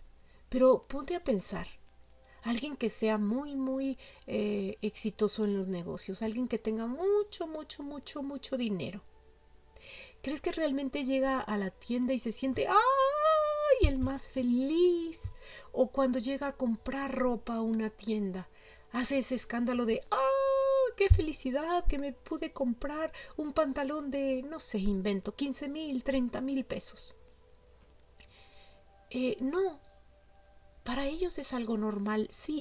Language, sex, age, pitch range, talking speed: Spanish, female, 40-59, 215-280 Hz, 140 wpm